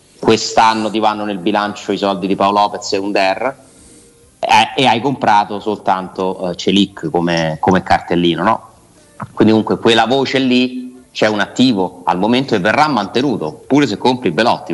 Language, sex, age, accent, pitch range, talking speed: Italian, male, 30-49, native, 95-120 Hz, 165 wpm